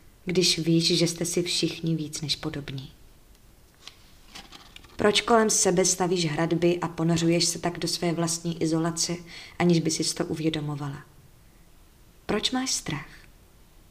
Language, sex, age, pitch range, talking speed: Czech, female, 20-39, 165-190 Hz, 130 wpm